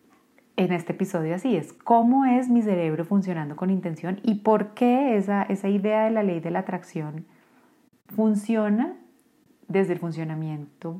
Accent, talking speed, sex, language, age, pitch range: Colombian, 155 wpm, female, Spanish, 30-49, 170-220 Hz